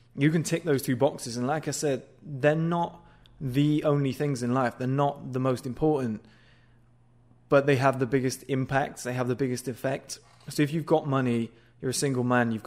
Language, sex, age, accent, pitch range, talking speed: English, male, 20-39, British, 125-145 Hz, 205 wpm